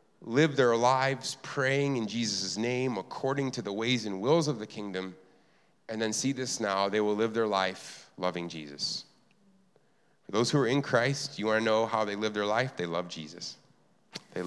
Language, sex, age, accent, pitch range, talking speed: English, male, 30-49, American, 95-125 Hz, 195 wpm